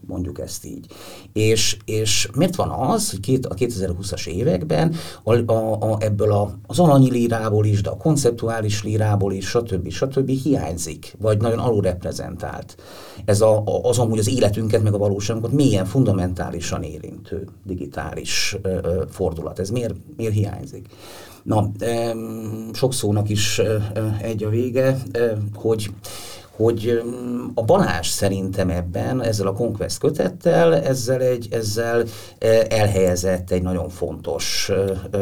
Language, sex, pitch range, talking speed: Hungarian, male, 95-115 Hz, 125 wpm